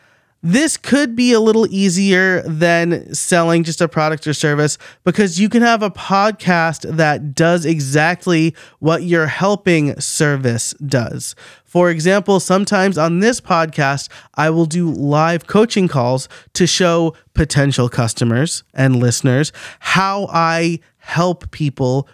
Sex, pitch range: male, 150-190 Hz